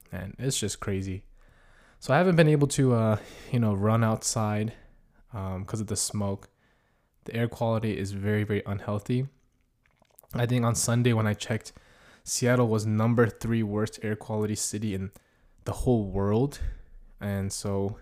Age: 20-39